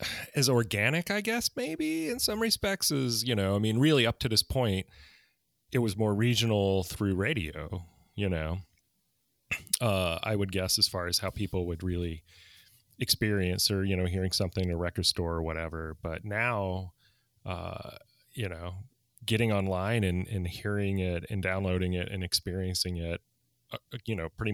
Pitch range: 85-110 Hz